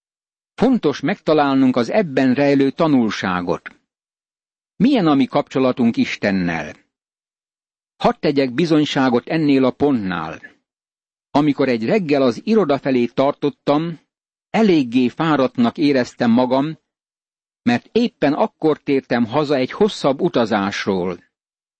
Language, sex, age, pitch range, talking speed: Hungarian, male, 60-79, 130-160 Hz, 95 wpm